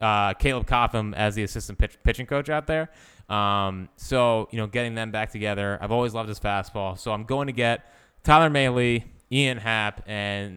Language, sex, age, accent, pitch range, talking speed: English, male, 20-39, American, 100-125 Hz, 195 wpm